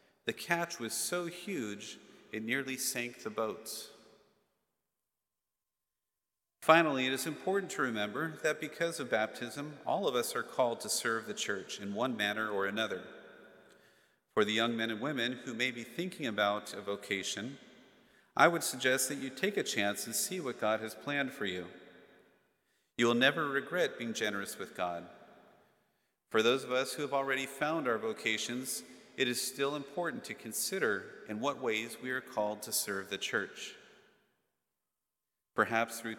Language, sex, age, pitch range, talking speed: English, male, 40-59, 105-140 Hz, 165 wpm